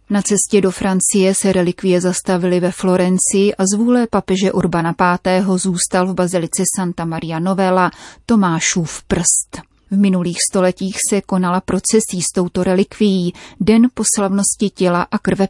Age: 30-49